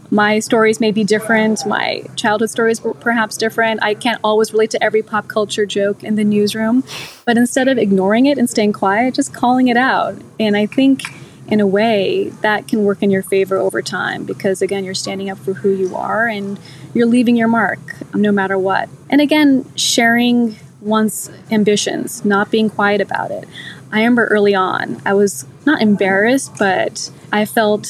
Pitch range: 200-240 Hz